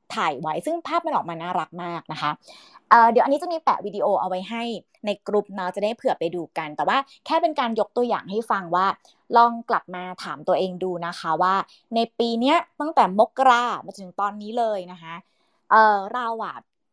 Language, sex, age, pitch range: Thai, female, 30-49, 185-250 Hz